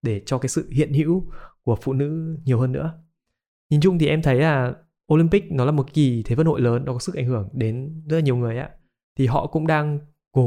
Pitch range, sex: 120-155 Hz, male